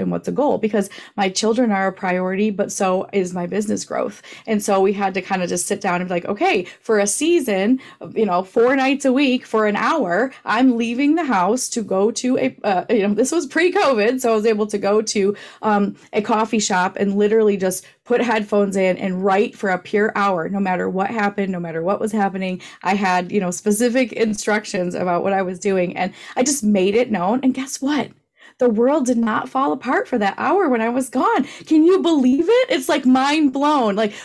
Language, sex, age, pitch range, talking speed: English, female, 30-49, 200-280 Hz, 230 wpm